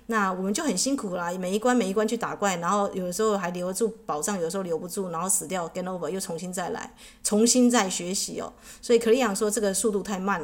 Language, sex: Chinese, female